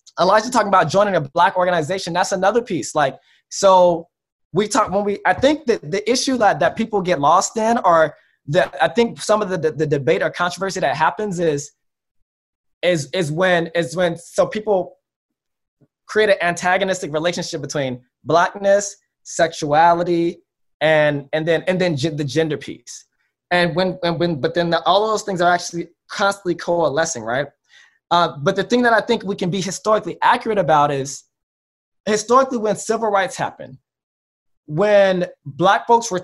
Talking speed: 165 wpm